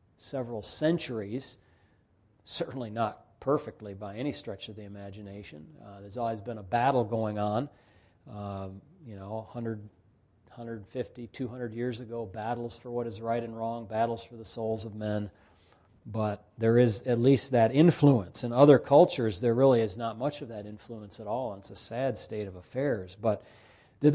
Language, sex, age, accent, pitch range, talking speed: English, male, 40-59, American, 105-130 Hz, 170 wpm